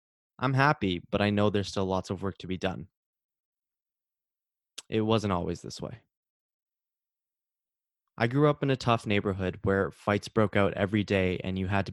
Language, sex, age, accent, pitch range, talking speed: English, male, 20-39, American, 95-105 Hz, 175 wpm